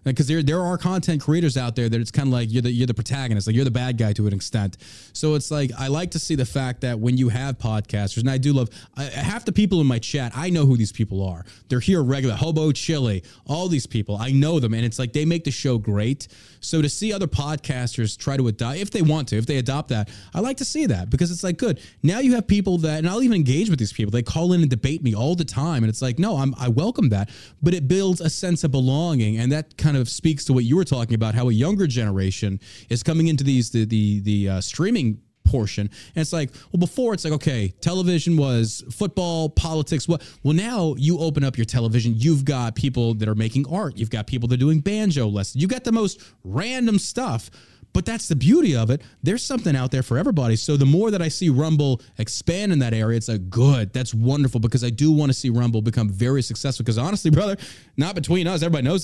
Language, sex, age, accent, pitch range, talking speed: English, male, 20-39, American, 115-160 Hz, 255 wpm